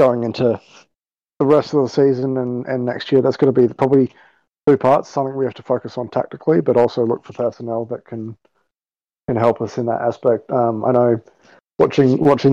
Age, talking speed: 20-39, 205 wpm